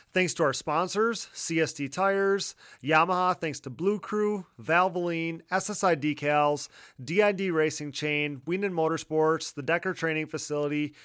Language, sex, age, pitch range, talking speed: English, male, 30-49, 145-180 Hz, 125 wpm